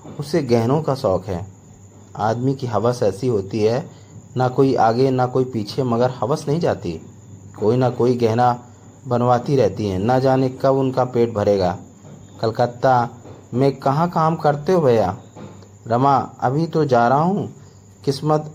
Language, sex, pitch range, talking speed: Hindi, male, 105-145 Hz, 155 wpm